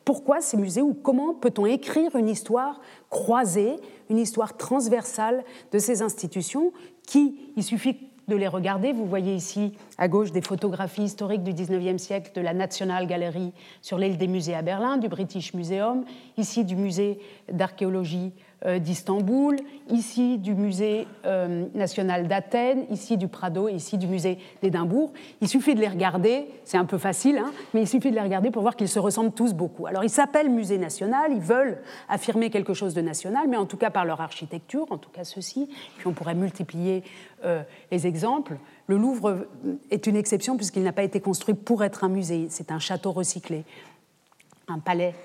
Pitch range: 185-240 Hz